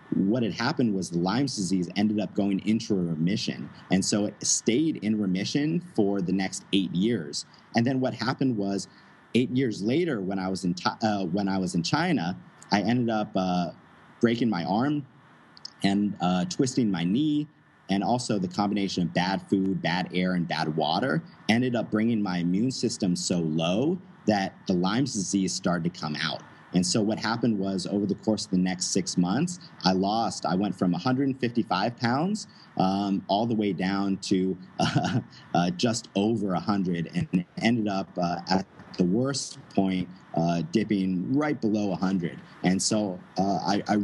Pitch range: 90-115 Hz